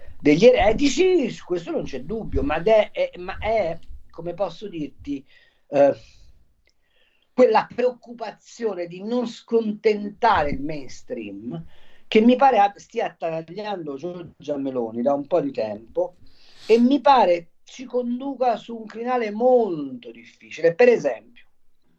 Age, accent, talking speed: 40-59, native, 130 wpm